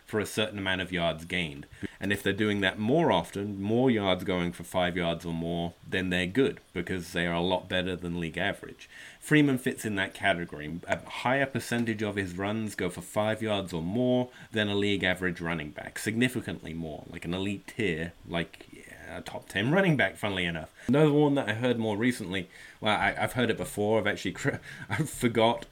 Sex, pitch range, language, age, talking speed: male, 95-125 Hz, English, 30-49, 210 wpm